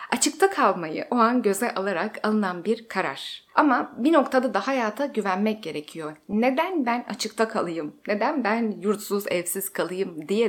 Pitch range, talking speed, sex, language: 195-260 Hz, 150 wpm, female, Turkish